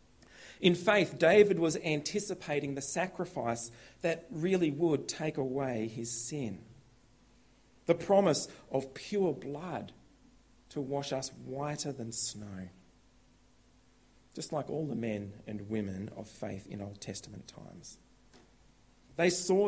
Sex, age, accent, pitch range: male, 40-59, Australian, 120-170 Hz